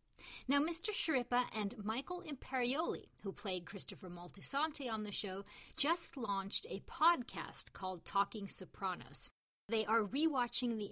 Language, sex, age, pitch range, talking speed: English, female, 50-69, 195-250 Hz, 130 wpm